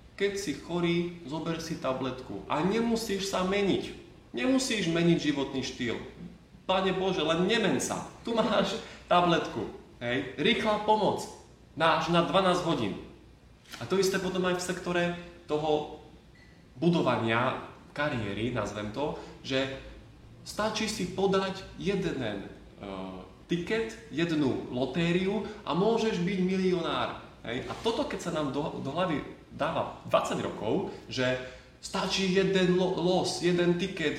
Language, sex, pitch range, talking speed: Slovak, male, 135-190 Hz, 125 wpm